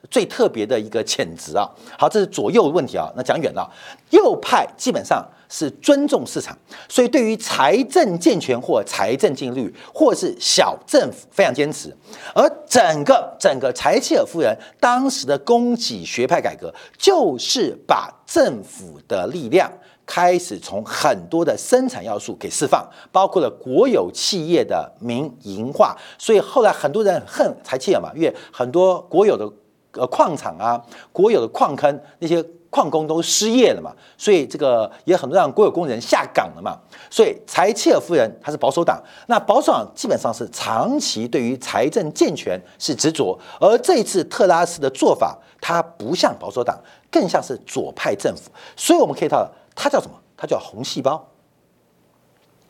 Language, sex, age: Chinese, male, 50-69